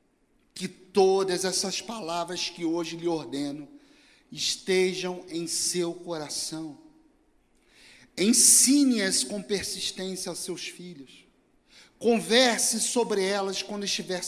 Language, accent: Portuguese, Brazilian